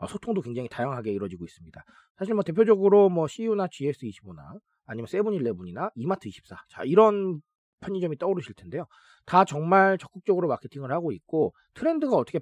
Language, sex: Korean, male